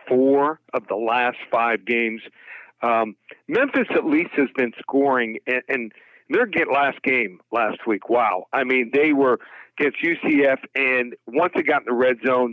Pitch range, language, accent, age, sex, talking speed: 125-150 Hz, English, American, 50-69, male, 170 wpm